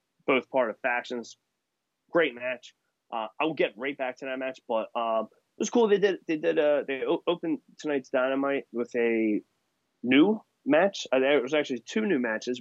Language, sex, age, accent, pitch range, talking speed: English, male, 20-39, American, 110-130 Hz, 185 wpm